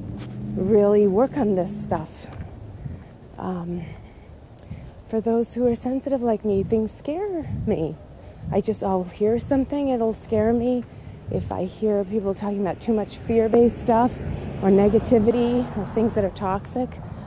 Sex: female